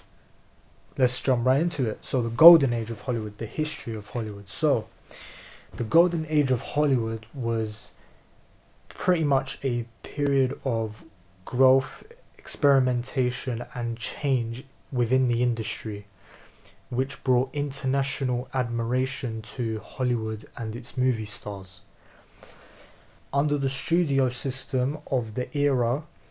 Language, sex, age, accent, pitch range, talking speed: English, male, 20-39, British, 115-135 Hz, 115 wpm